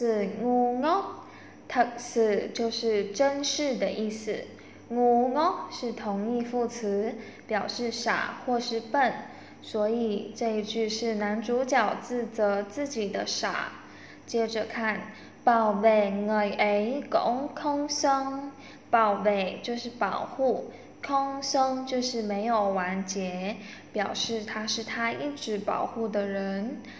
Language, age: Vietnamese, 10-29